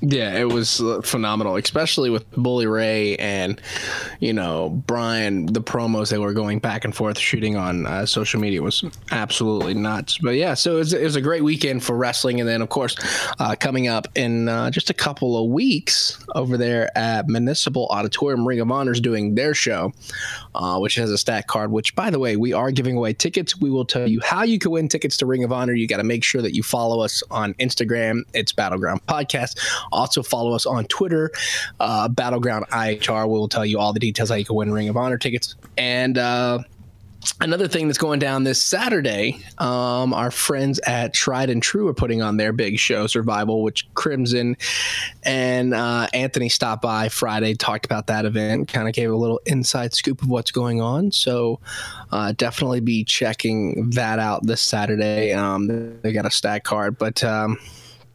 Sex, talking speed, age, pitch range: male, 195 wpm, 20-39, 110-125 Hz